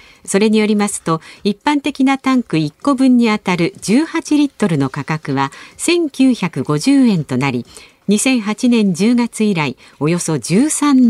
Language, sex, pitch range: Japanese, female, 160-250 Hz